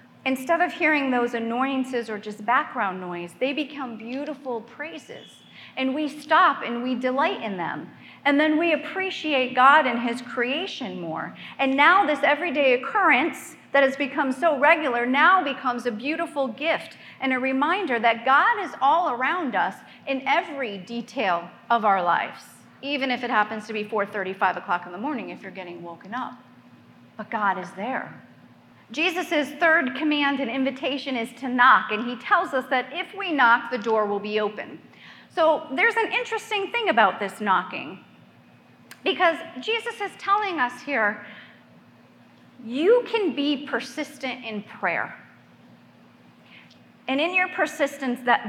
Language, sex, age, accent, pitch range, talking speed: English, female, 40-59, American, 225-300 Hz, 155 wpm